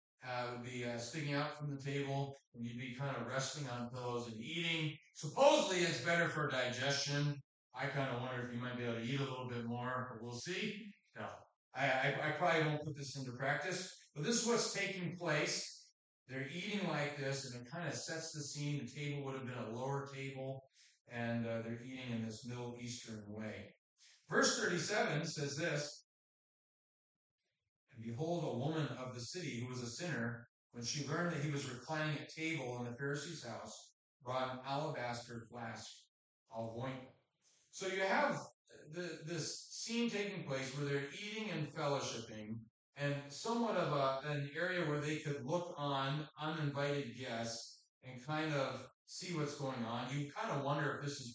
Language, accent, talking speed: English, American, 185 wpm